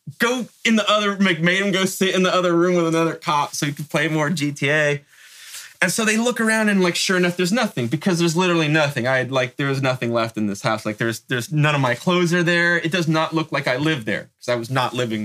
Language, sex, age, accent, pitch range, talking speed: English, male, 20-39, American, 115-170 Hz, 270 wpm